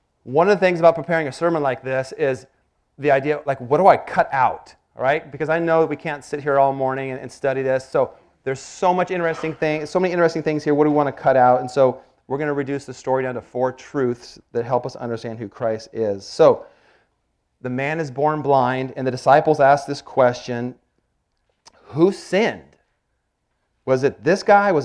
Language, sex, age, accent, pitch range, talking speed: English, male, 40-59, American, 120-155 Hz, 220 wpm